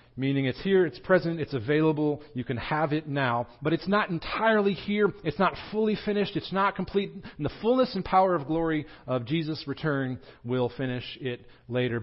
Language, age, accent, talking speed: English, 40-59, American, 190 wpm